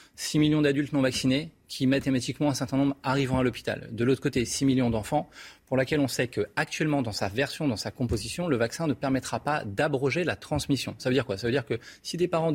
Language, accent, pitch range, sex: French, French, 115-145 Hz, male